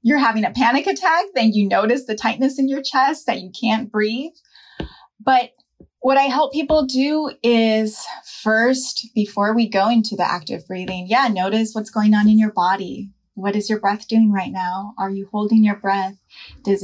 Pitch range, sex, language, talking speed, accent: 190-235 Hz, female, English, 190 wpm, American